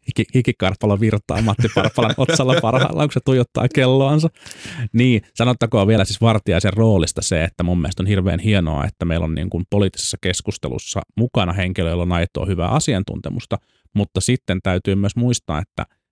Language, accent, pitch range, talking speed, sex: Finnish, native, 95-115 Hz, 160 wpm, male